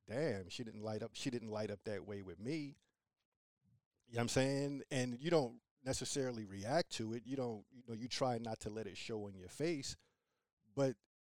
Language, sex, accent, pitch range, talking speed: English, male, American, 110-140 Hz, 215 wpm